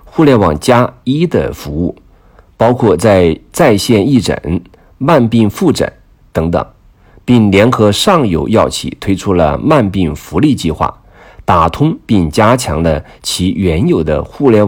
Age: 50-69